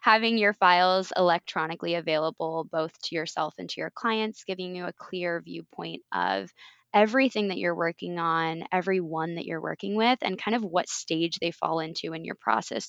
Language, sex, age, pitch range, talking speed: English, female, 20-39, 165-190 Hz, 180 wpm